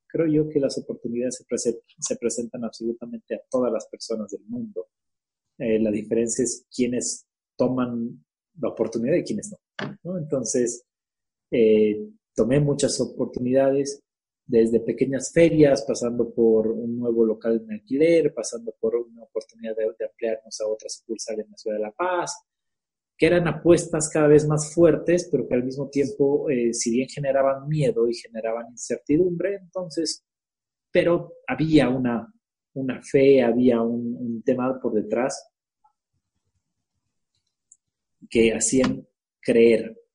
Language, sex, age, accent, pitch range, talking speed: Spanish, male, 30-49, Mexican, 115-160 Hz, 140 wpm